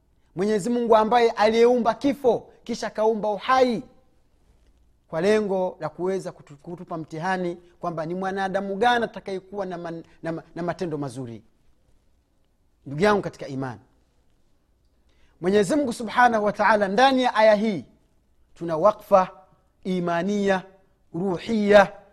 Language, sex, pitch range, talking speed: Swahili, male, 165-240 Hz, 115 wpm